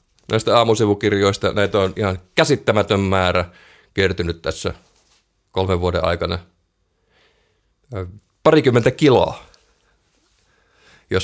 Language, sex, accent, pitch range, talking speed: Finnish, male, native, 90-115 Hz, 80 wpm